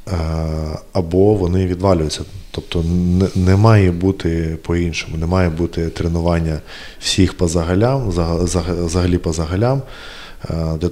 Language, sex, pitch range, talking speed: Ukrainian, male, 80-95 Hz, 100 wpm